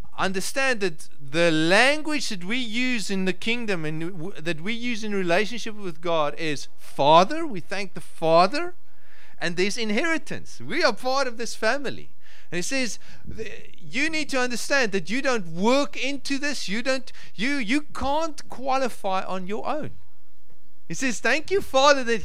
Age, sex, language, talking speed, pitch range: 40-59, male, English, 165 wpm, 155-245 Hz